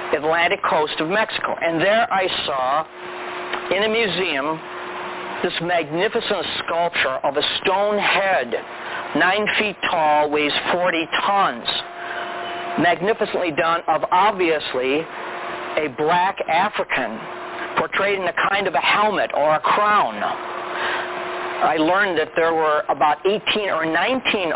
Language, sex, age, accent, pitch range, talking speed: English, male, 50-69, American, 165-210 Hz, 120 wpm